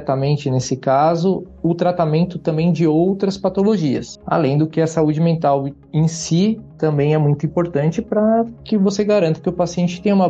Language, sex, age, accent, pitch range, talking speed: Portuguese, male, 20-39, Brazilian, 130-155 Hz, 175 wpm